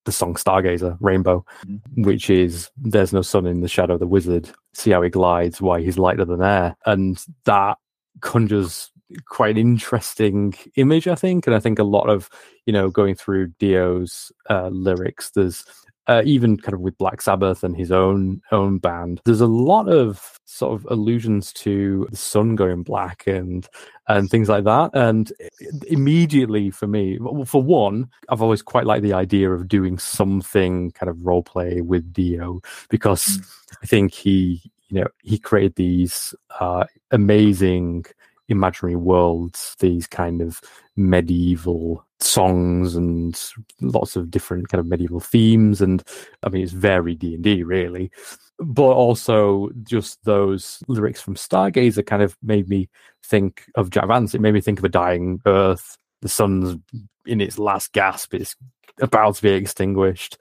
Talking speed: 165 wpm